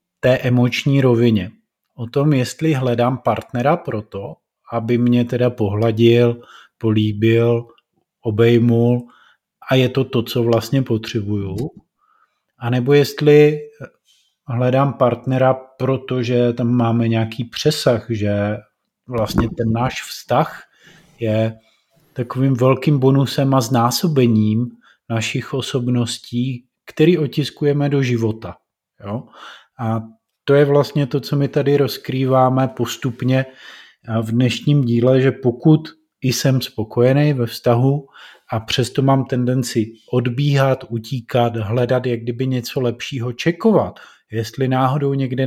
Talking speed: 110 wpm